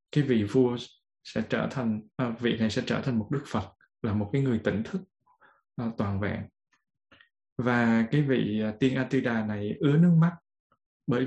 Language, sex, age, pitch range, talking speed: Vietnamese, male, 20-39, 105-130 Hz, 170 wpm